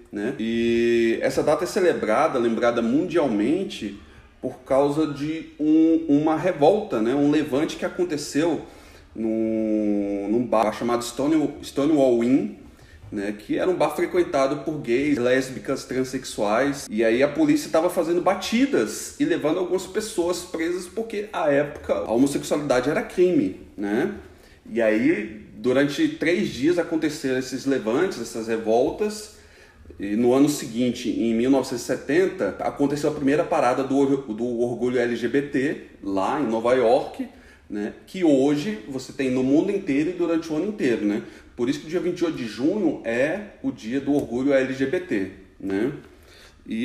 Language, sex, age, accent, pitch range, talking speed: Portuguese, male, 30-49, Brazilian, 120-170 Hz, 140 wpm